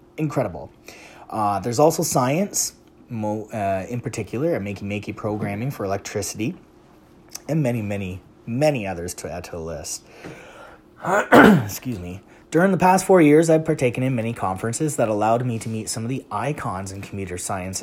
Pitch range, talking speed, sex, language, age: 95-125 Hz, 160 wpm, male, English, 30-49